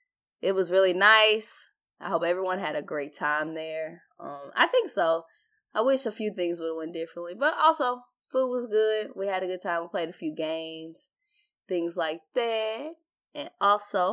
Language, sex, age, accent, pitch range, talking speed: English, female, 20-39, American, 170-270 Hz, 190 wpm